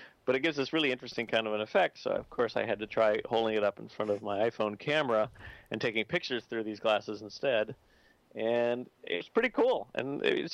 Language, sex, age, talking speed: English, male, 40-59, 220 wpm